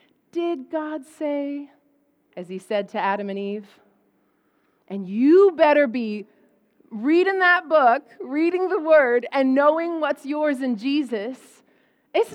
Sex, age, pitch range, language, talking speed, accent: female, 30-49, 235-315 Hz, English, 130 wpm, American